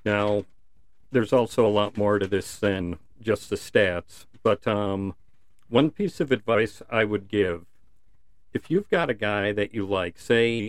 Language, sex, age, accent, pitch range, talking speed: English, male, 50-69, American, 95-120 Hz, 170 wpm